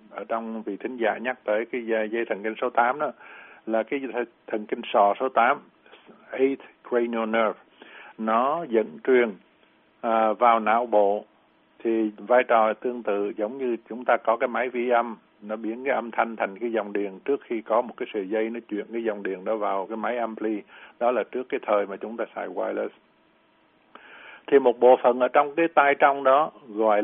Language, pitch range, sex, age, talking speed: Vietnamese, 105-120 Hz, male, 60-79, 200 wpm